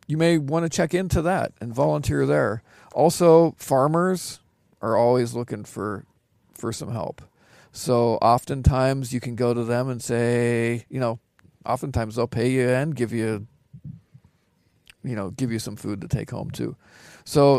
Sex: male